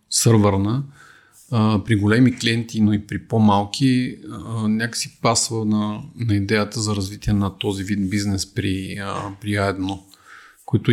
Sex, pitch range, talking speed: male, 100-120 Hz, 135 wpm